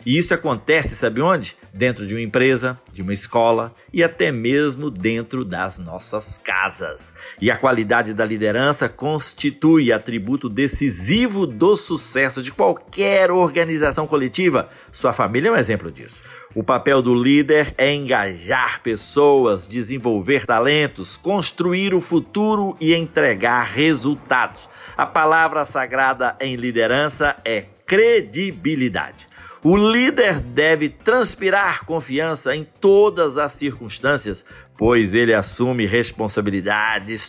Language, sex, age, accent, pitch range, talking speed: Portuguese, male, 50-69, Brazilian, 115-165 Hz, 120 wpm